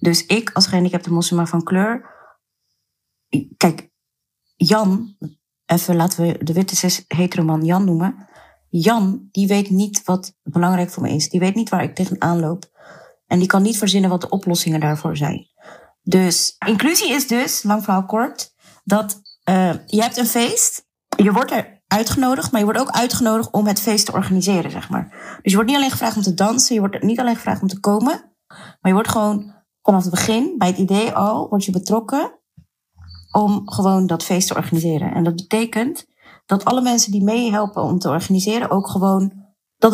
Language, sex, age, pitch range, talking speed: Dutch, female, 30-49, 180-225 Hz, 190 wpm